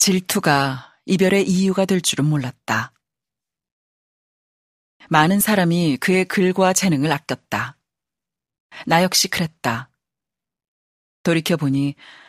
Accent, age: native, 40-59